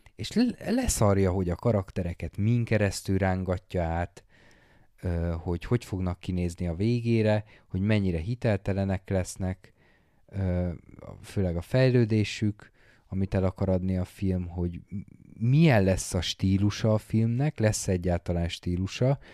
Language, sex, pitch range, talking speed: Hungarian, male, 90-110 Hz, 115 wpm